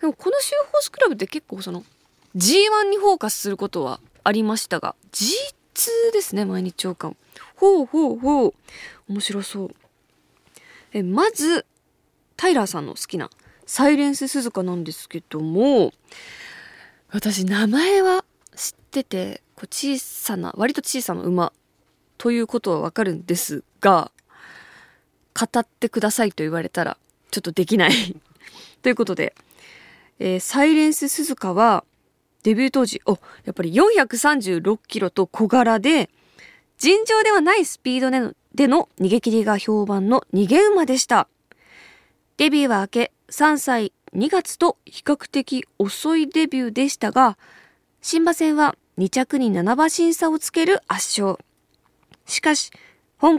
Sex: female